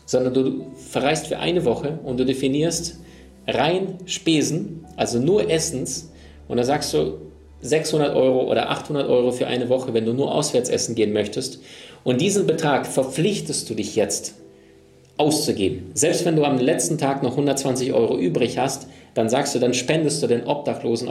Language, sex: German, male